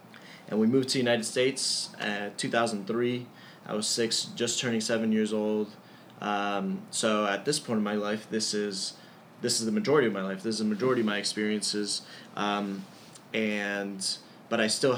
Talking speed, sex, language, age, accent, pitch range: 185 wpm, male, English, 20-39, American, 100-115 Hz